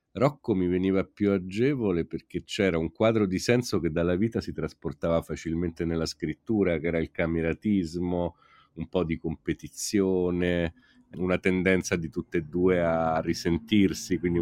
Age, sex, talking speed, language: 40-59, male, 150 wpm, Italian